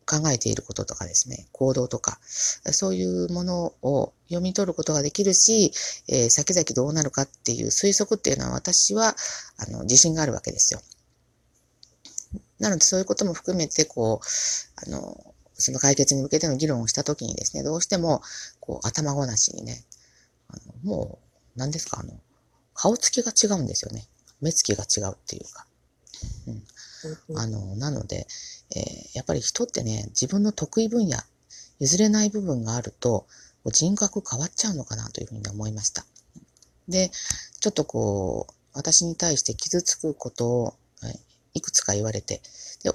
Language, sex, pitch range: Japanese, female, 115-175 Hz